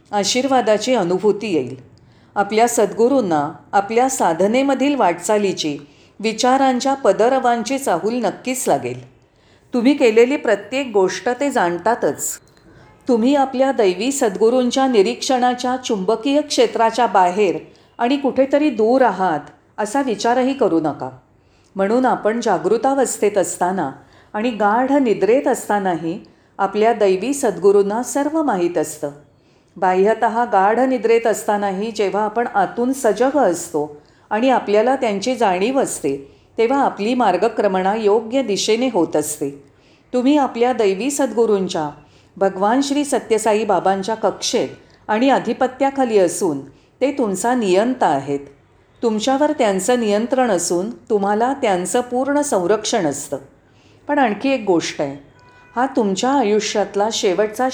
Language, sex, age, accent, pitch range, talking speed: Marathi, female, 40-59, native, 185-255 Hz, 105 wpm